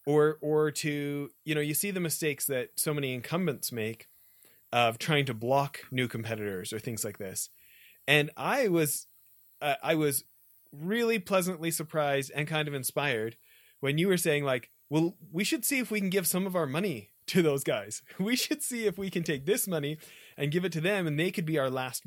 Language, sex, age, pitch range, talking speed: English, male, 30-49, 130-170 Hz, 210 wpm